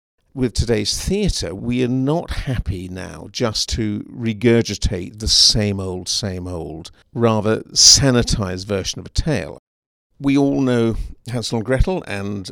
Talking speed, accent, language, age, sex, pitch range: 140 wpm, British, English, 50-69, male, 100-125 Hz